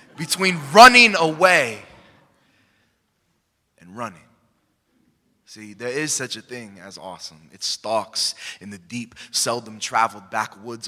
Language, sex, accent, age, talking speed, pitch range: English, male, American, 20-39, 110 wpm, 115-180 Hz